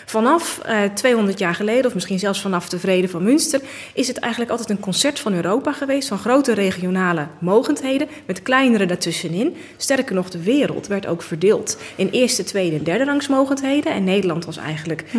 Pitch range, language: 185-265 Hz, Dutch